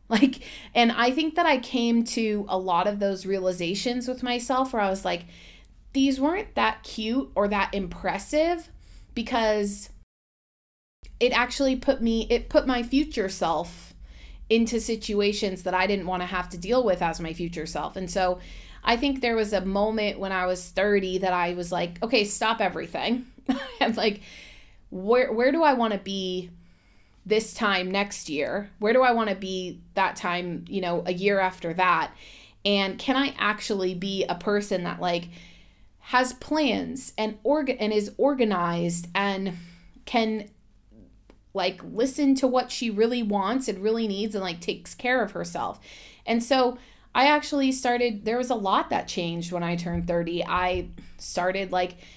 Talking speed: 175 wpm